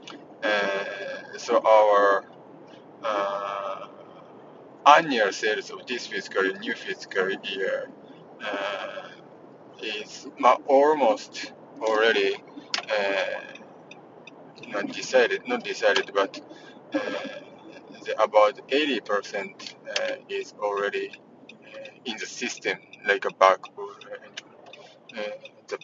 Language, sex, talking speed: English, male, 95 wpm